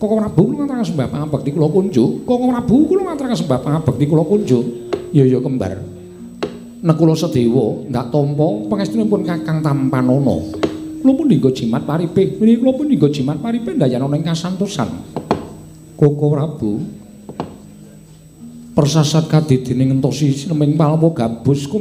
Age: 50-69